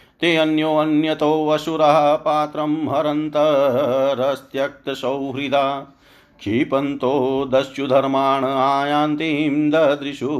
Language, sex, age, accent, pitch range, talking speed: Hindi, male, 50-69, native, 140-155 Hz, 60 wpm